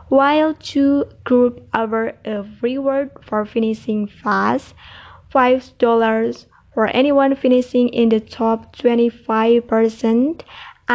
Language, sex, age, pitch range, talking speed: English, female, 20-39, 225-260 Hz, 95 wpm